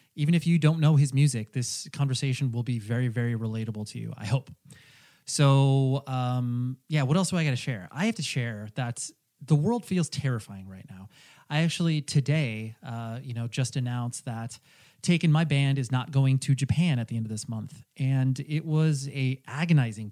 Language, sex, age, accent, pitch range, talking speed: English, male, 30-49, American, 125-155 Hz, 200 wpm